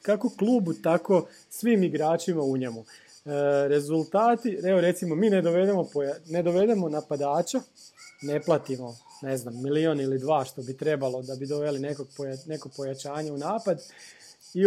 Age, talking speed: 40-59, 150 wpm